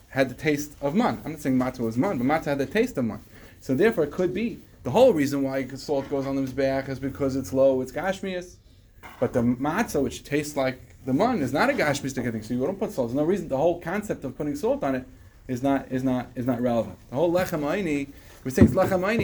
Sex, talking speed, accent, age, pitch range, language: male, 260 wpm, American, 30-49, 125-165 Hz, English